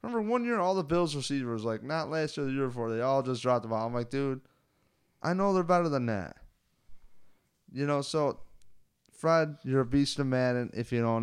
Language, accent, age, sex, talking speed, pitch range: English, American, 20-39, male, 220 wpm, 125-165 Hz